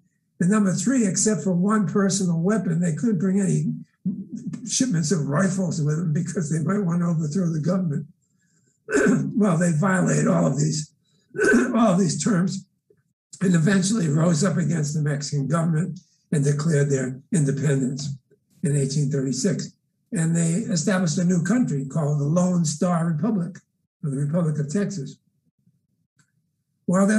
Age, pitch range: 60-79, 155-190 Hz